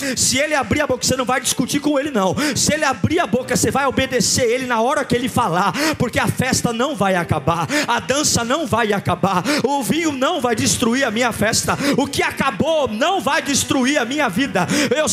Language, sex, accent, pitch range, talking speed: Portuguese, male, Brazilian, 260-320 Hz, 220 wpm